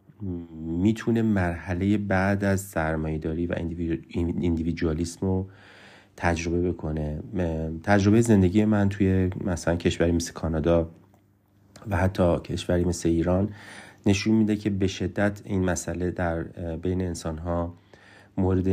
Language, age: Persian, 30-49